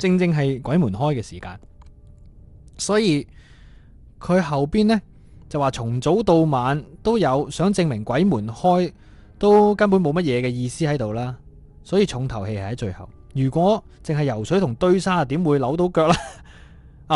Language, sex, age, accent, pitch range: Chinese, male, 20-39, native, 100-160 Hz